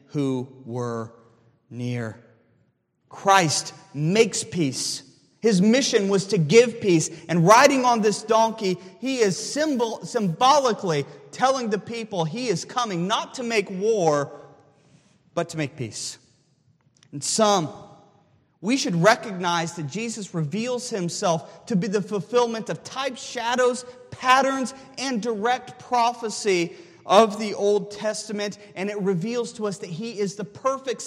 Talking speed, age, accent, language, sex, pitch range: 135 wpm, 30-49, American, English, male, 165-230 Hz